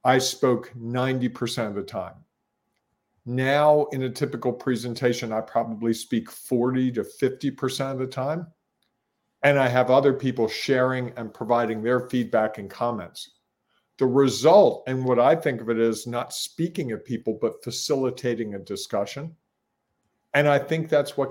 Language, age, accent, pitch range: English, 50-69, American, 120-140 Hz